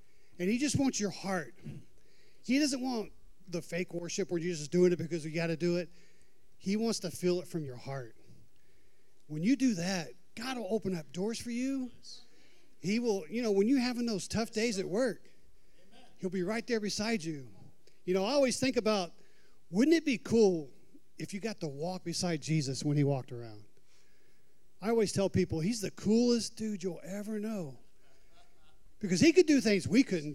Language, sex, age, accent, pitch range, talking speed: English, male, 40-59, American, 170-225 Hz, 195 wpm